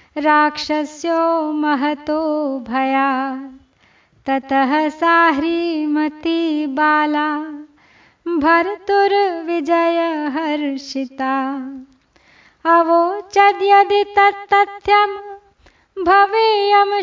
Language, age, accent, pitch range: Hindi, 30-49, native, 300-335 Hz